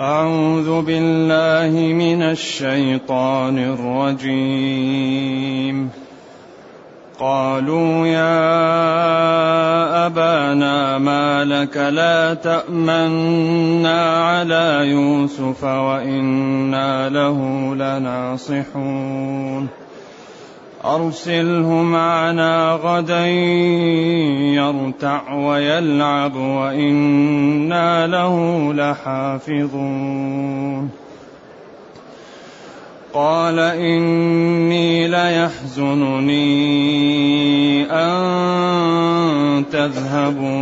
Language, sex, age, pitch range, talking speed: Arabic, male, 30-49, 135-165 Hz, 45 wpm